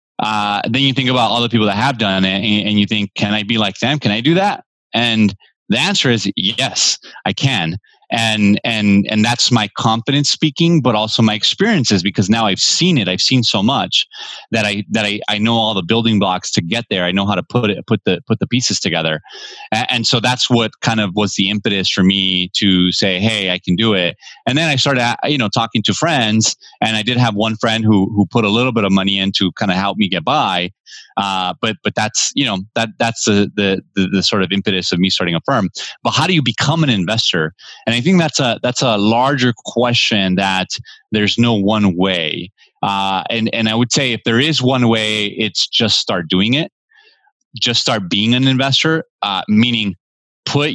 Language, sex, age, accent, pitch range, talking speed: English, male, 30-49, American, 100-125 Hz, 230 wpm